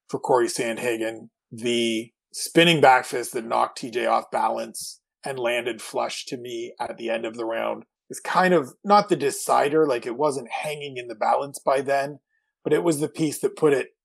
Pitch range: 125-170 Hz